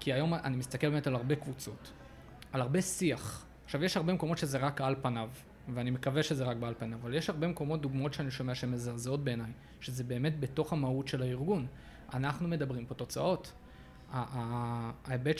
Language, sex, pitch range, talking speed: Hebrew, male, 125-155 Hz, 180 wpm